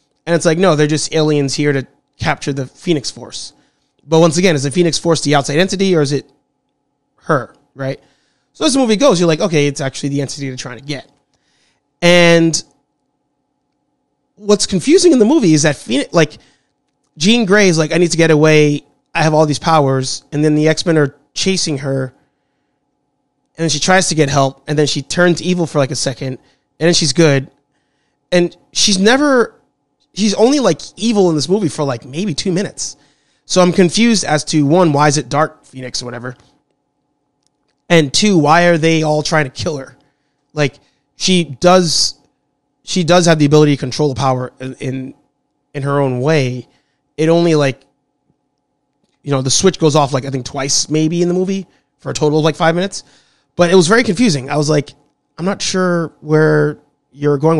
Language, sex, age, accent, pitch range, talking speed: English, male, 20-39, American, 140-175 Hz, 195 wpm